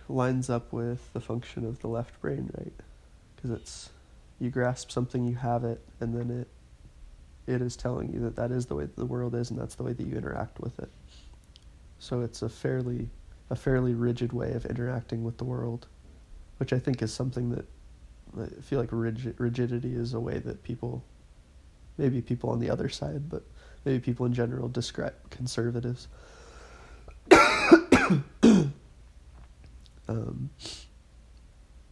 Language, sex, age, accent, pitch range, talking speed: English, male, 20-39, American, 75-120 Hz, 160 wpm